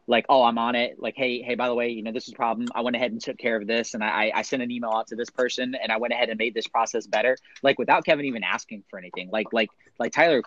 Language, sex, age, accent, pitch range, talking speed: English, male, 30-49, American, 105-130 Hz, 315 wpm